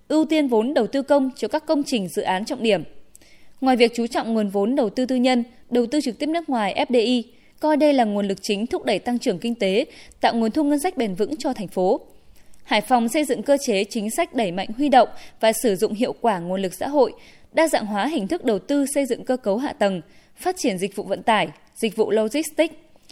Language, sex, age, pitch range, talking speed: Vietnamese, female, 20-39, 220-280 Hz, 250 wpm